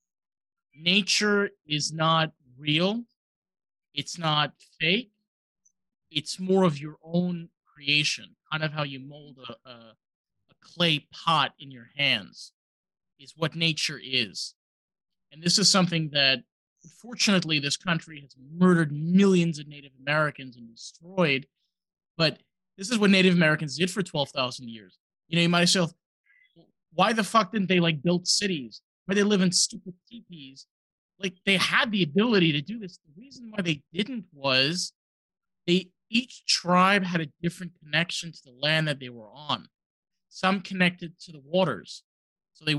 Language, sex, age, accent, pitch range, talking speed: English, male, 30-49, American, 150-185 Hz, 155 wpm